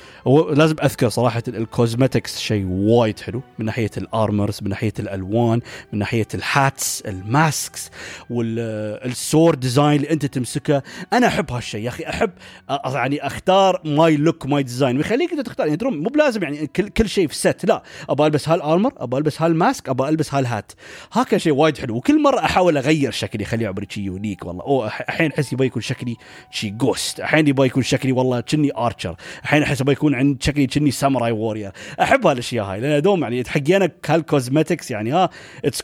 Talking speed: 180 wpm